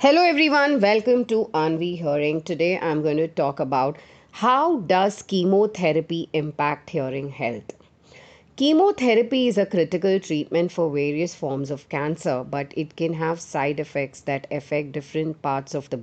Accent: Indian